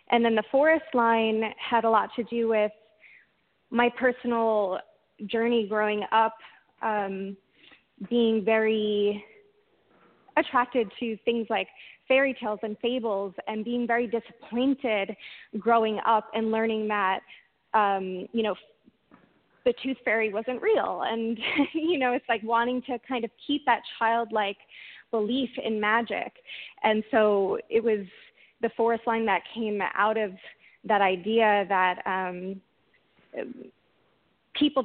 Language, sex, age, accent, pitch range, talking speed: English, female, 20-39, American, 215-240 Hz, 130 wpm